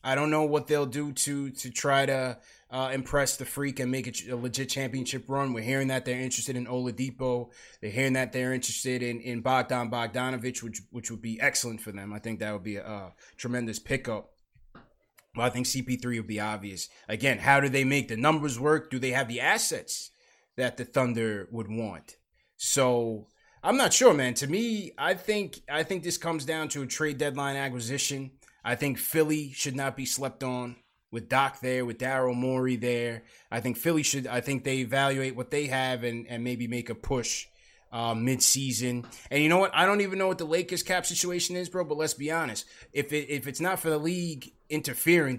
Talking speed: 210 wpm